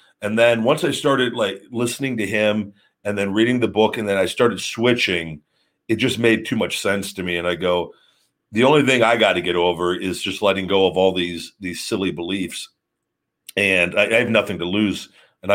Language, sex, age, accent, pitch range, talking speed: English, male, 40-59, American, 95-120 Hz, 215 wpm